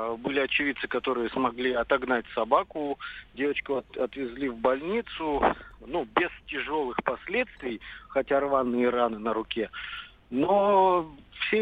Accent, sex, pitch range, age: native, male, 125-160 Hz, 50-69